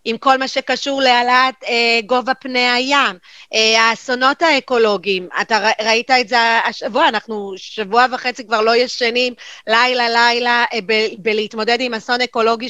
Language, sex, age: Hebrew, female, 30-49